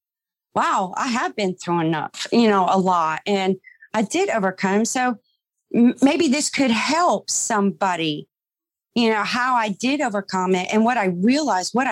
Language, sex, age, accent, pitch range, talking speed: English, female, 40-59, American, 190-260 Hz, 160 wpm